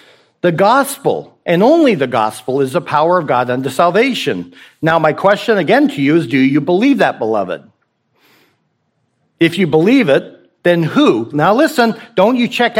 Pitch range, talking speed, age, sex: 125-185 Hz, 170 wpm, 50-69, male